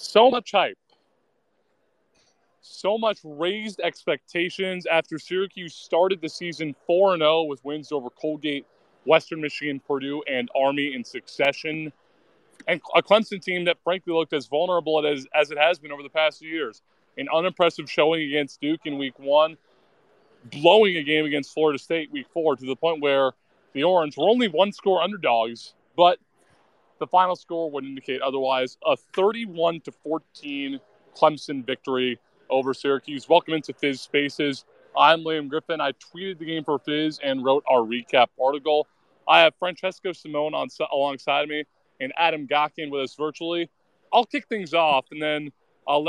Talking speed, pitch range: 160 wpm, 140-175 Hz